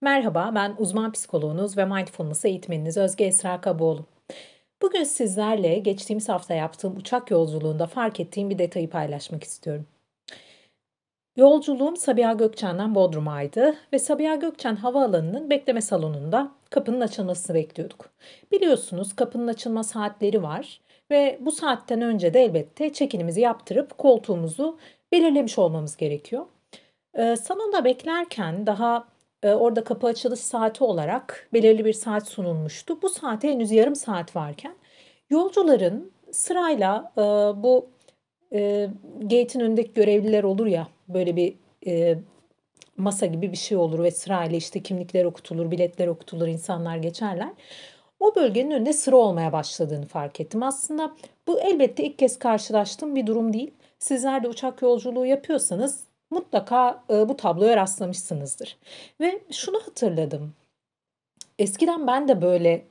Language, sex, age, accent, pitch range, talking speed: Turkish, female, 40-59, native, 180-260 Hz, 125 wpm